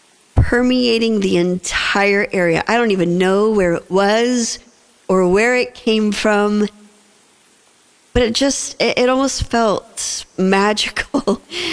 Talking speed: 125 wpm